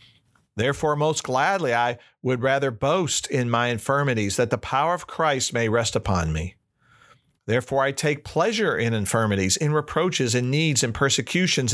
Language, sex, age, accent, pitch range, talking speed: English, male, 50-69, American, 110-140 Hz, 160 wpm